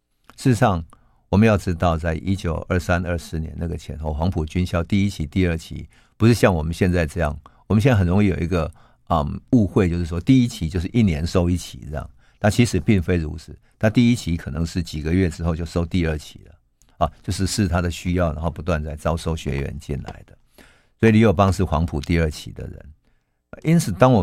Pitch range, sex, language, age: 80-105 Hz, male, Chinese, 50-69